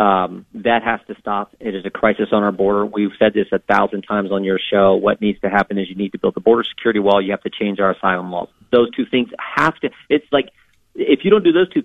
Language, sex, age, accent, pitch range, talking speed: English, male, 40-59, American, 110-135 Hz, 275 wpm